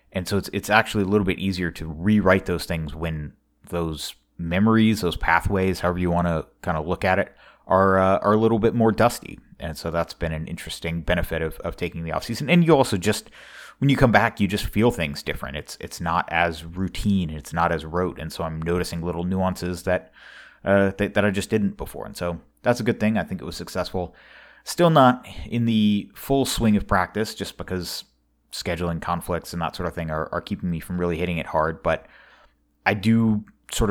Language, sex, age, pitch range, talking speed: English, male, 30-49, 85-100 Hz, 220 wpm